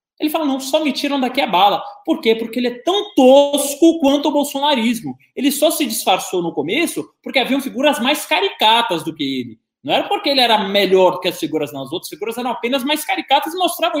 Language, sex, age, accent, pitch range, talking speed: Portuguese, male, 20-39, Brazilian, 230-305 Hz, 225 wpm